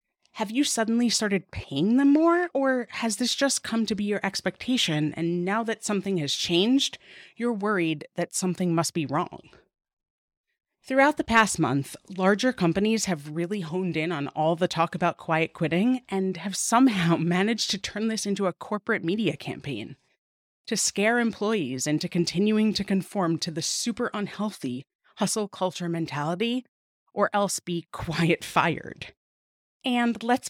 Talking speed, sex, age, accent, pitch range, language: 155 wpm, female, 30-49, American, 170-225 Hz, English